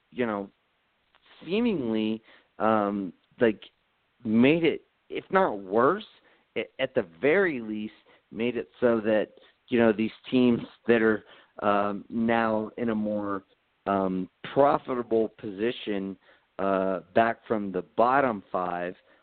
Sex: male